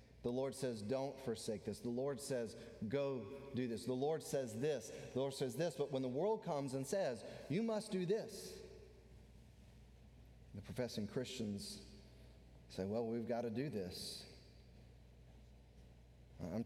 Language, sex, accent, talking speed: English, male, American, 150 wpm